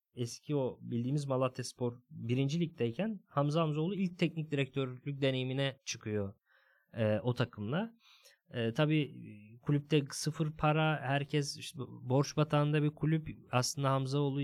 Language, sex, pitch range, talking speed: Turkish, male, 120-155 Hz, 125 wpm